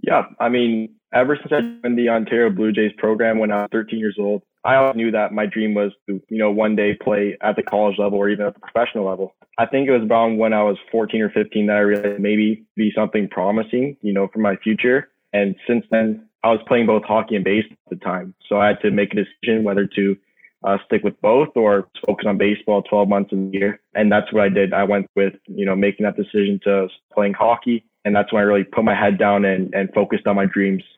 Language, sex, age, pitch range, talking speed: English, male, 20-39, 100-110 Hz, 250 wpm